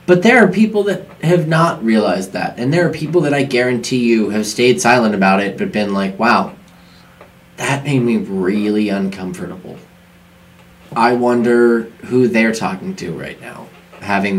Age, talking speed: 20-39, 165 wpm